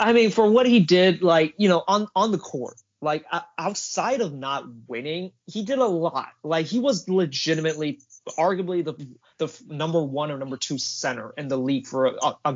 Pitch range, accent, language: 135-185 Hz, American, English